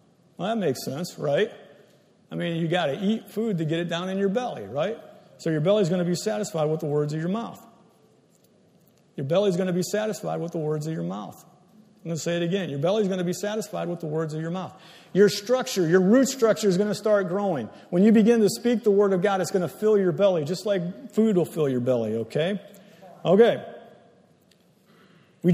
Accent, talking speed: American, 235 wpm